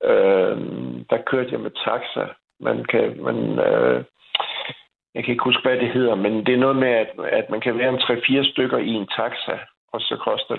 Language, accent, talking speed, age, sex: Danish, native, 205 wpm, 60-79, male